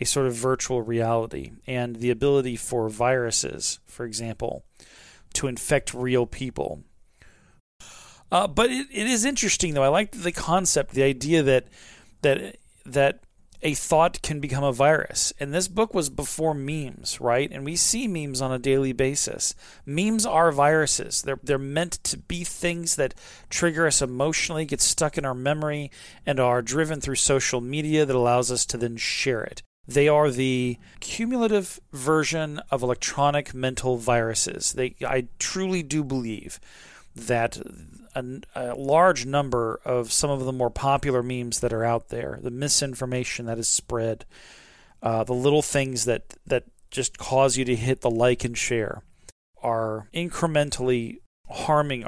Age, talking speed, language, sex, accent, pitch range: 40-59, 160 wpm, English, male, American, 120-150 Hz